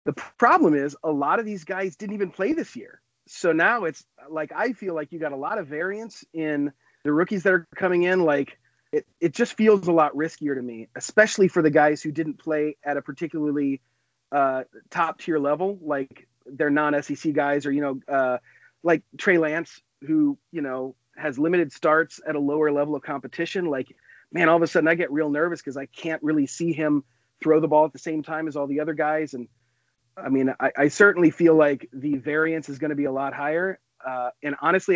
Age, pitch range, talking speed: 30-49, 140-170 Hz, 220 wpm